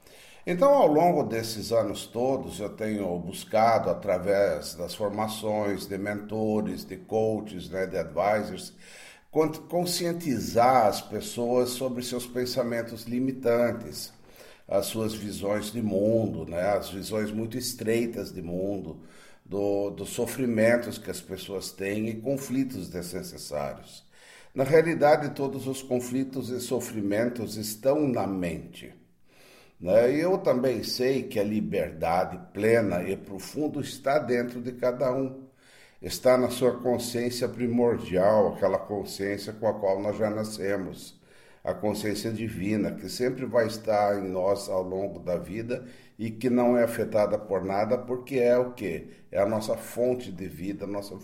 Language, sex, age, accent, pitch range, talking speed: Portuguese, male, 60-79, Brazilian, 100-125 Hz, 135 wpm